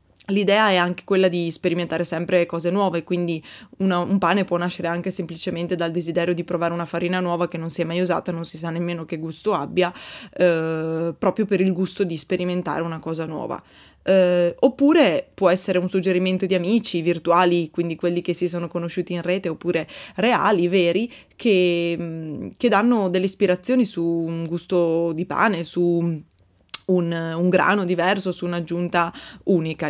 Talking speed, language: 170 wpm, Italian